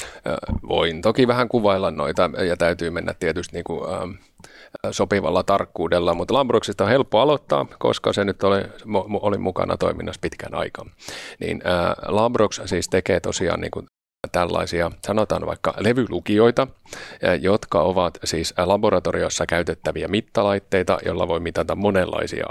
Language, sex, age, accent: Finnish, male, 30-49, native